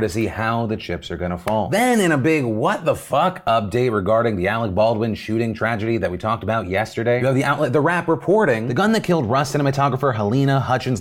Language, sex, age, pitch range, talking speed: English, male, 30-49, 110-135 Hz, 235 wpm